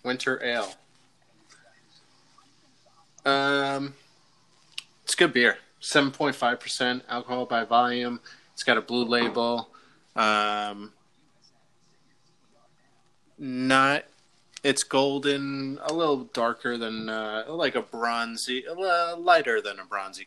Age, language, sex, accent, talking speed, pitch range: 20-39, English, male, American, 105 wpm, 105-135 Hz